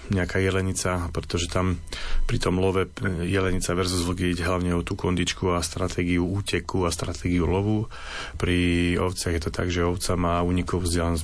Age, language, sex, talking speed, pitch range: 30-49, Slovak, male, 160 wpm, 90-100 Hz